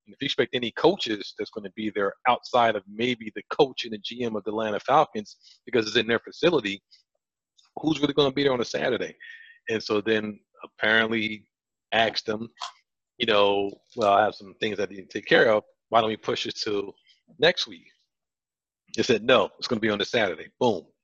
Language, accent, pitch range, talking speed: English, American, 110-150 Hz, 215 wpm